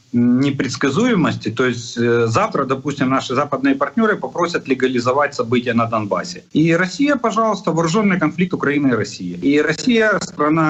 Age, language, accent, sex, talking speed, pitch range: 40-59, Russian, native, male, 140 wpm, 120-165 Hz